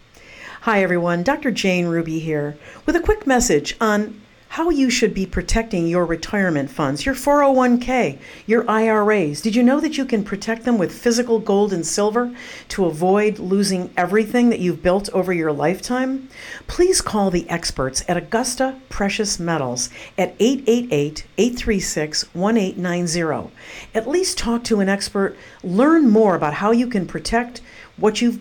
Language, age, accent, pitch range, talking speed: English, 50-69, American, 175-235 Hz, 150 wpm